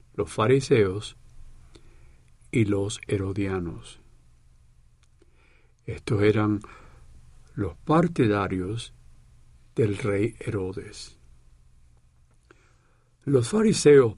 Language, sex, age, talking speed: Spanish, male, 60-79, 60 wpm